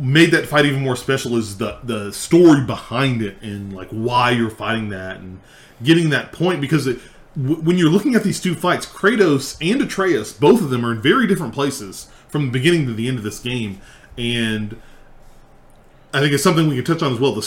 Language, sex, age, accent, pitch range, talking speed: English, male, 30-49, American, 115-155 Hz, 220 wpm